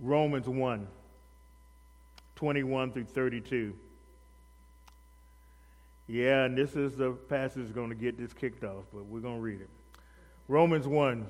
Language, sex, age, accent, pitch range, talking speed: English, male, 40-59, American, 100-150 Hz, 135 wpm